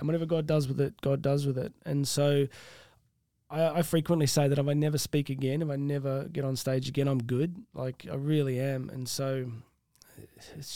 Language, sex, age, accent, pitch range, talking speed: English, male, 20-39, Australian, 130-160 Hz, 210 wpm